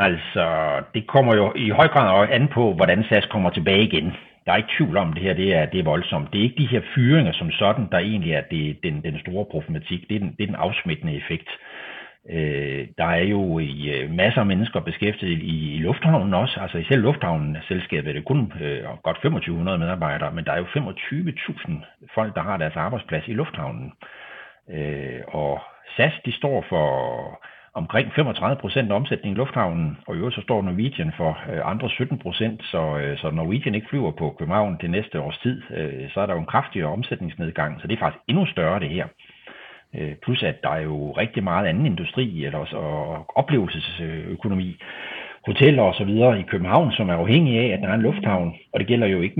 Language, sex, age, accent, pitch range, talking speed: Danish, male, 60-79, native, 80-130 Hz, 195 wpm